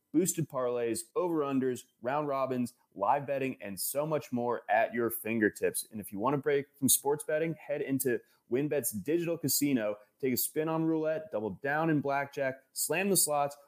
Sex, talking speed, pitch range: male, 180 wpm, 110-150 Hz